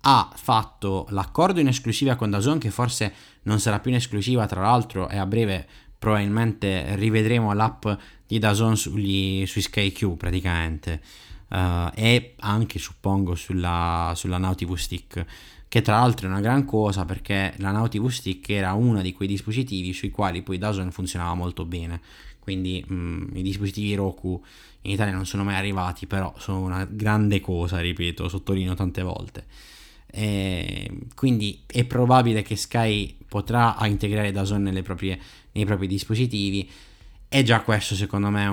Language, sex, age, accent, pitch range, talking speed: Italian, male, 20-39, native, 95-110 Hz, 155 wpm